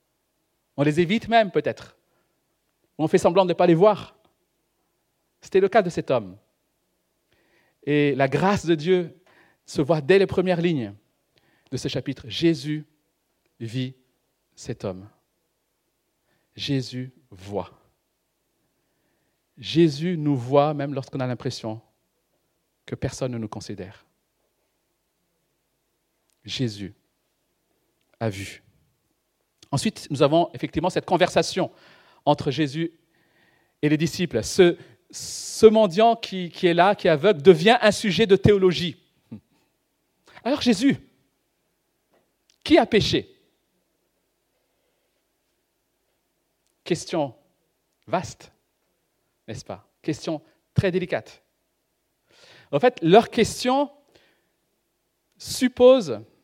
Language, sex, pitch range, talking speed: French, male, 135-195 Hz, 105 wpm